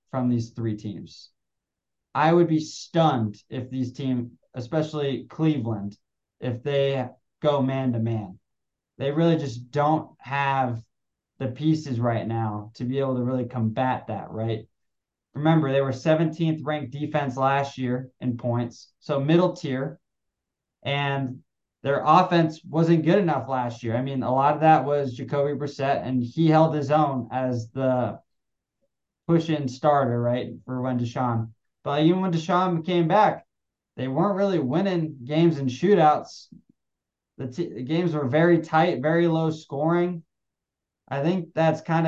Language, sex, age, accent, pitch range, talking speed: English, male, 20-39, American, 125-155 Hz, 150 wpm